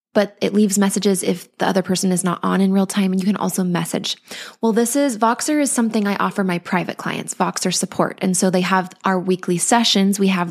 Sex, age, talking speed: female, 20-39, 235 wpm